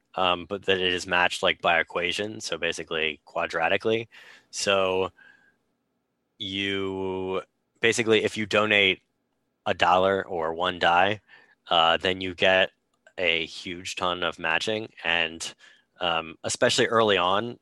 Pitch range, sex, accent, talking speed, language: 85-110 Hz, male, American, 125 wpm, English